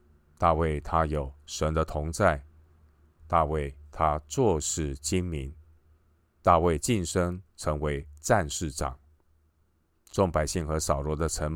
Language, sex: Chinese, male